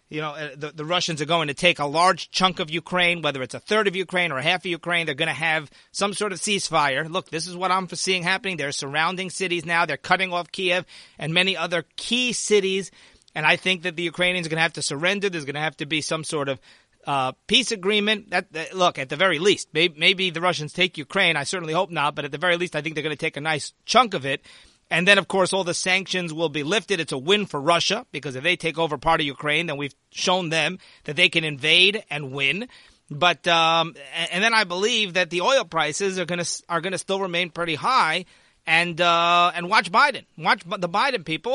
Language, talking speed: English, 250 wpm